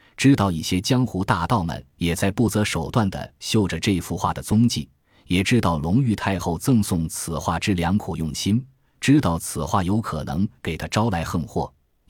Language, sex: Chinese, male